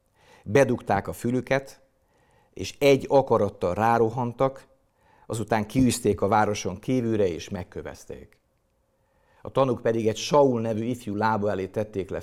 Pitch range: 100-120 Hz